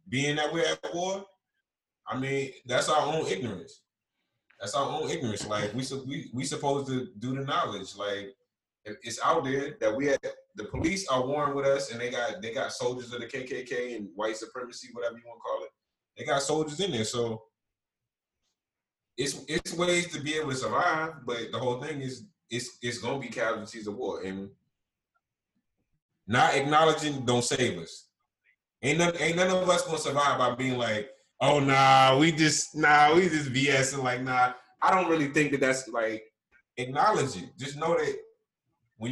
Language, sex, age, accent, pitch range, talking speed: English, male, 20-39, American, 120-150 Hz, 190 wpm